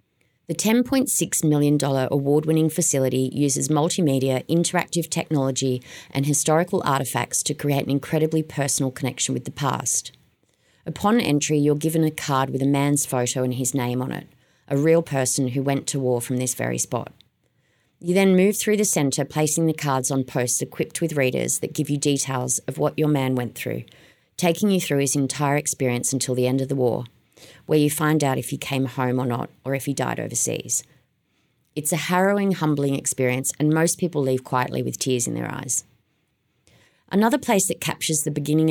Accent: Australian